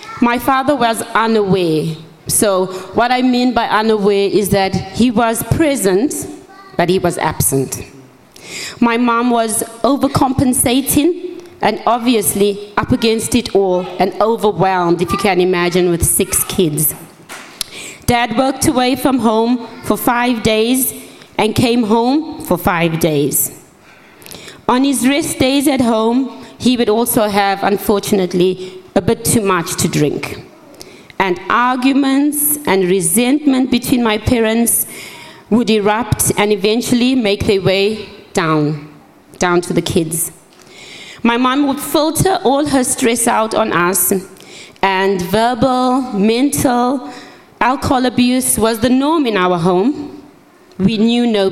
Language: English